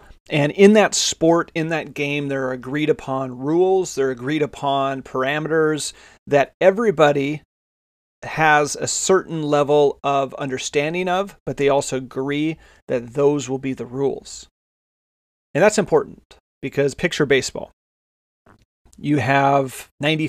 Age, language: 30-49, English